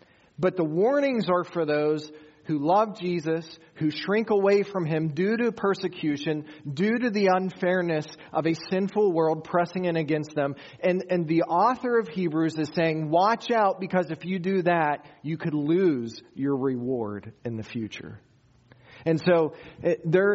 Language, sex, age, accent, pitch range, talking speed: English, male, 40-59, American, 140-180 Hz, 160 wpm